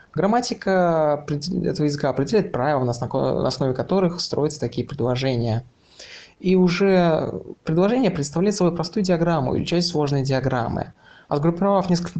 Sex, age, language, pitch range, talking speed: male, 20-39, Russian, 135-185 Hz, 120 wpm